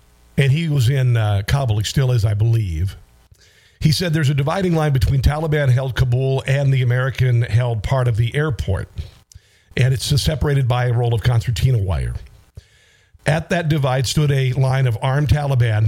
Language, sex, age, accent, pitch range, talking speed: English, male, 50-69, American, 120-145 Hz, 170 wpm